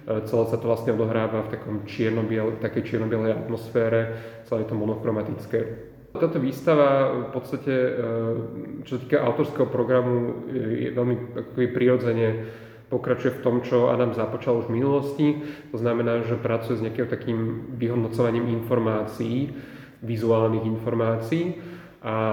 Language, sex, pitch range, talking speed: Slovak, male, 110-125 Hz, 130 wpm